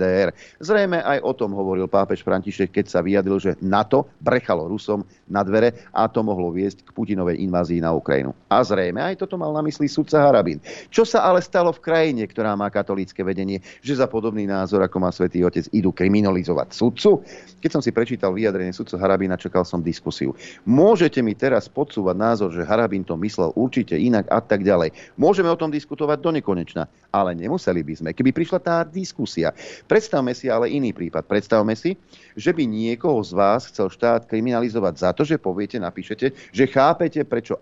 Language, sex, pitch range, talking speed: Slovak, male, 95-130 Hz, 185 wpm